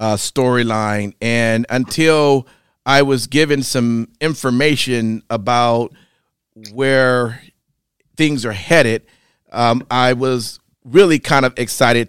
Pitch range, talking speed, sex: 110-130 Hz, 105 wpm, male